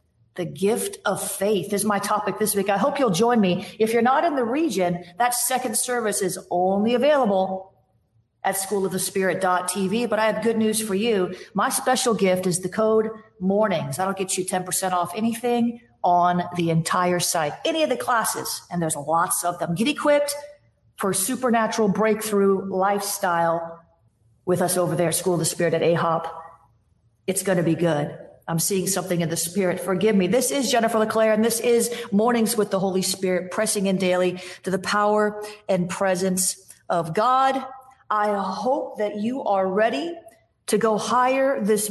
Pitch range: 180-230 Hz